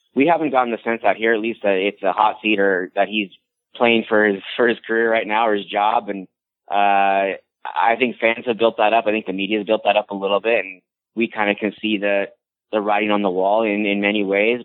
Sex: male